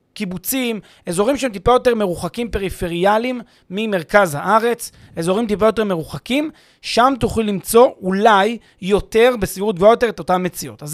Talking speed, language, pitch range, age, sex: 135 wpm, Hebrew, 175-235 Hz, 30-49, male